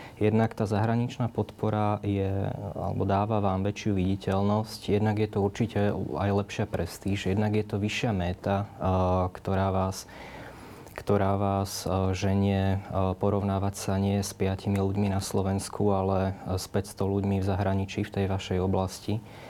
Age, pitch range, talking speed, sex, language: 20-39, 95-105 Hz, 135 wpm, male, Slovak